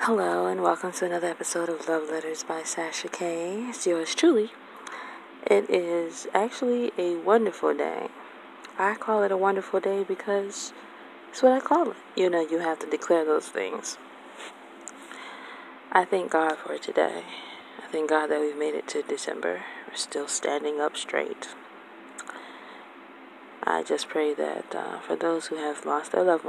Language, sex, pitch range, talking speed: English, female, 140-195 Hz, 165 wpm